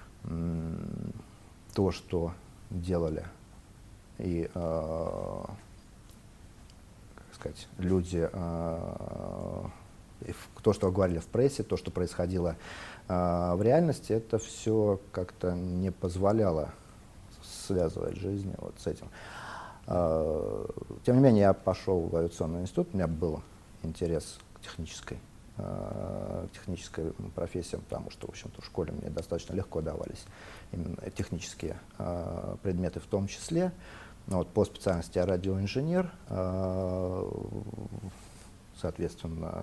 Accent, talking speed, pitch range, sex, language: native, 105 wpm, 90-105 Hz, male, Russian